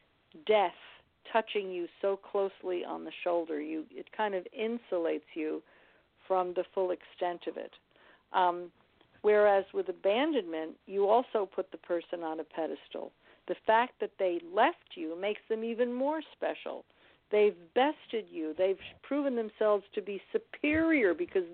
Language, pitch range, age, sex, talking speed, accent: English, 180-225 Hz, 50-69, female, 150 wpm, American